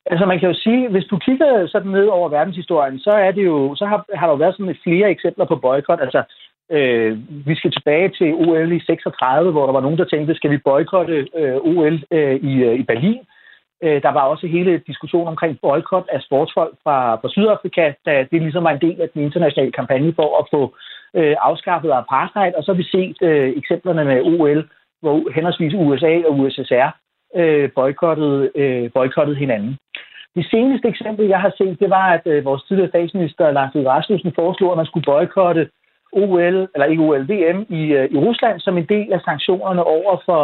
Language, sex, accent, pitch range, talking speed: Danish, male, native, 155-200 Hz, 195 wpm